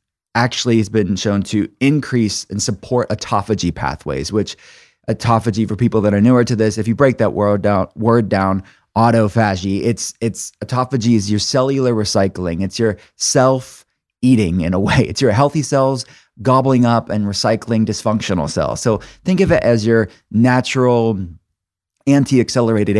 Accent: American